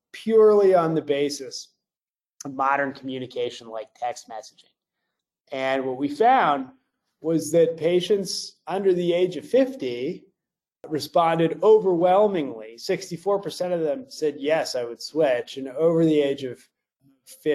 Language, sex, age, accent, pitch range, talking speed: English, male, 30-49, American, 130-195 Hz, 125 wpm